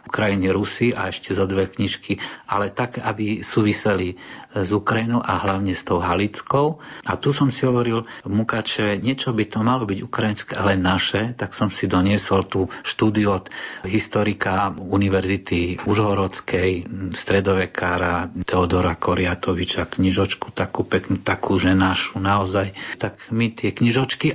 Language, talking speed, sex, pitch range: Slovak, 135 wpm, male, 95-120 Hz